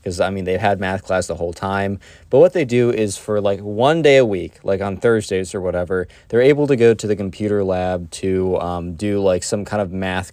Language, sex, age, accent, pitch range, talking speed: English, male, 20-39, American, 95-115 Hz, 245 wpm